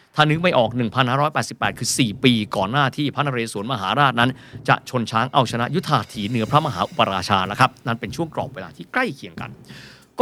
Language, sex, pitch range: Thai, male, 115-150 Hz